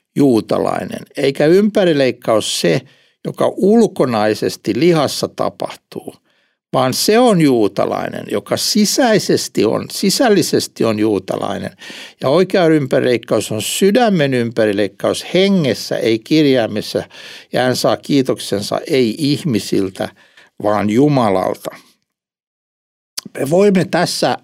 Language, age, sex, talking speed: Finnish, 60-79, male, 95 wpm